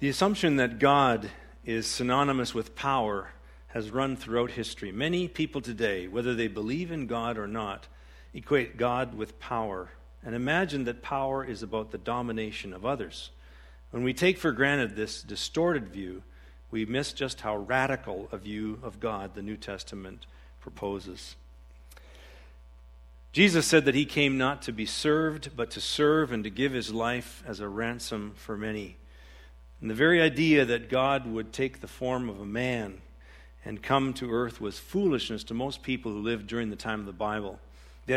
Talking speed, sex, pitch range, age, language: 175 wpm, male, 90-130 Hz, 50-69, English